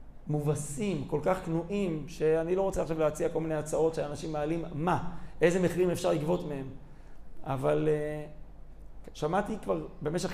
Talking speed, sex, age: 145 wpm, male, 40-59